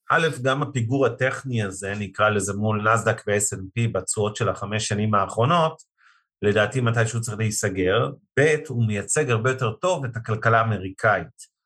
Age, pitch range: 40-59, 105-125 Hz